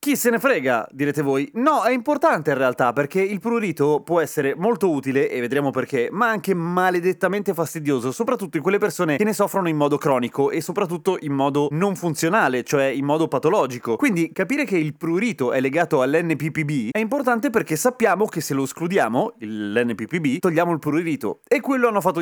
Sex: male